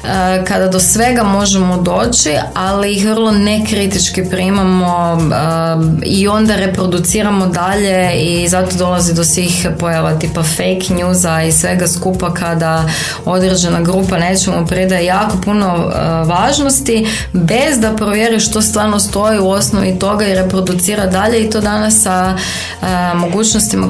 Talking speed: 130 wpm